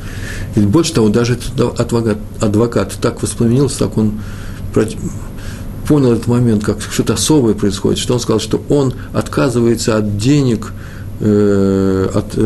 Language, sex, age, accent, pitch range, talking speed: Russian, male, 50-69, native, 100-115 Hz, 135 wpm